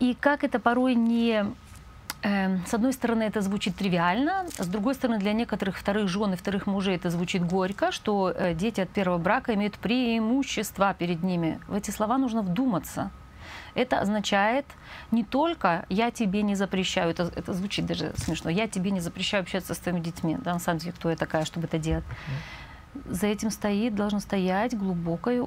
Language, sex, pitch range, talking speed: Russian, female, 180-225 Hz, 175 wpm